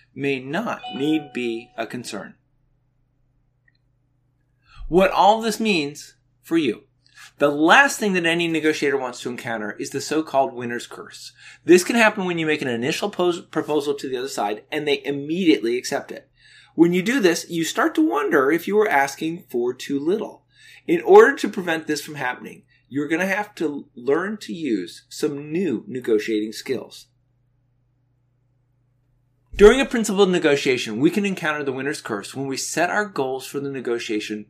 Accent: American